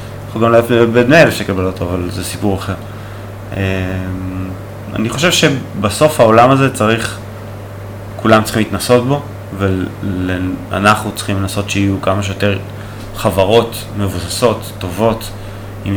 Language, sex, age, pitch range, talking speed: Hebrew, male, 20-39, 100-110 Hz, 120 wpm